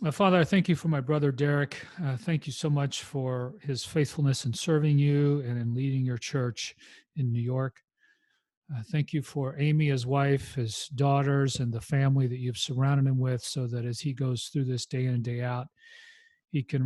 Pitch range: 125-150 Hz